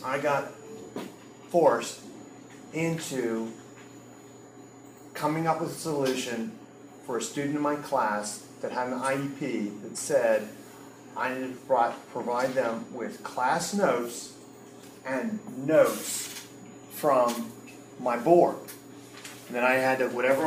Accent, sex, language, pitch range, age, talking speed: American, male, English, 135-205 Hz, 40-59, 115 wpm